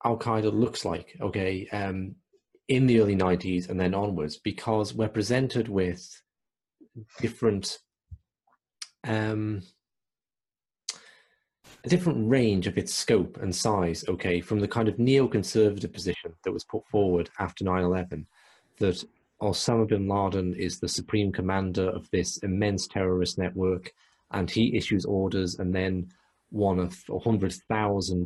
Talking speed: 135 wpm